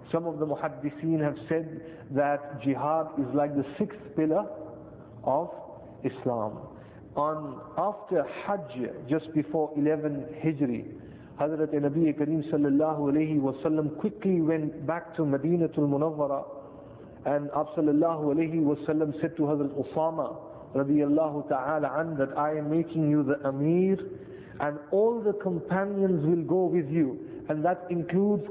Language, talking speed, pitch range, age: English, 135 wpm, 150-175 Hz, 50-69